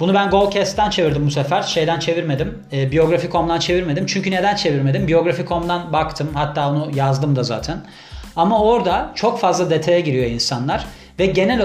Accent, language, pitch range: native, Turkish, 165-205 Hz